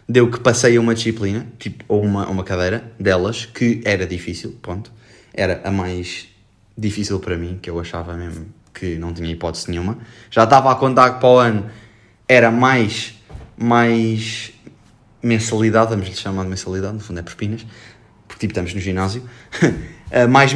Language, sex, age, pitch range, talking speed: Portuguese, male, 20-39, 100-140 Hz, 165 wpm